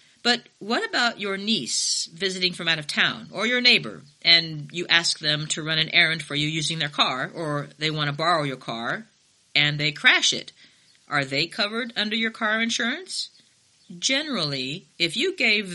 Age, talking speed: 50-69, 185 wpm